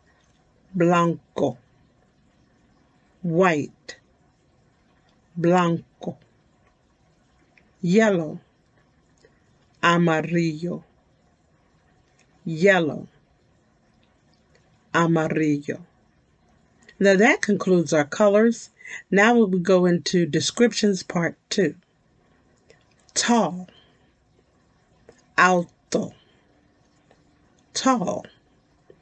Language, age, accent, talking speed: English, 50-69, American, 45 wpm